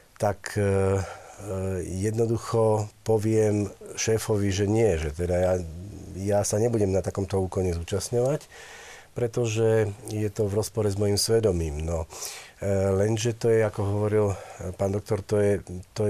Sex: male